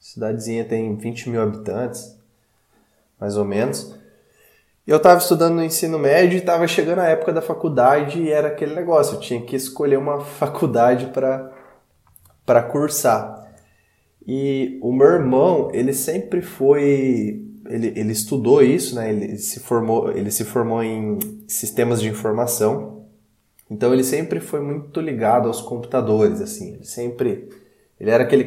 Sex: male